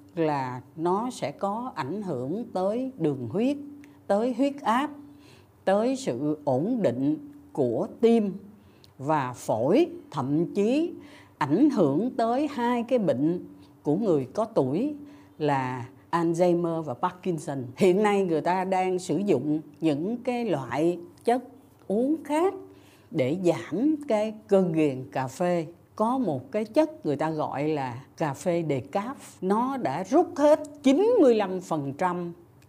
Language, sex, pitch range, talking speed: Vietnamese, female, 150-225 Hz, 130 wpm